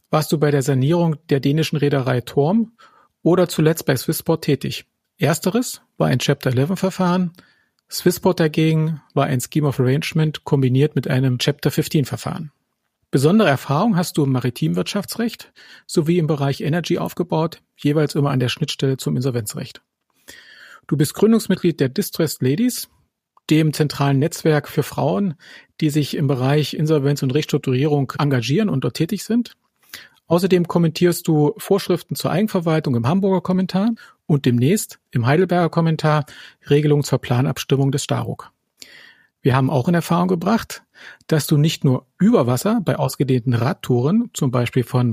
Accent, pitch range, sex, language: German, 140-175 Hz, male, German